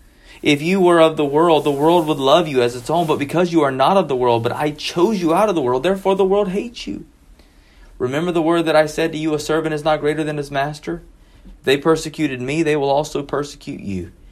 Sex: male